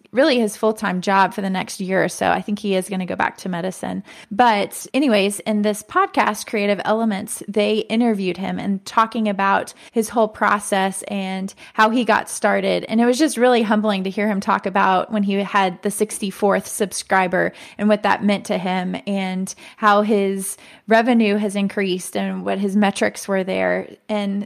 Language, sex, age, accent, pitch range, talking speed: English, female, 20-39, American, 200-225 Hz, 190 wpm